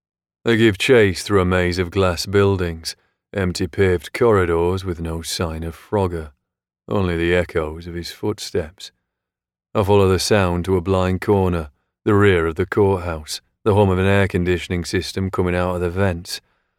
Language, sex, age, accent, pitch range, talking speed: English, male, 30-49, British, 85-100 Hz, 170 wpm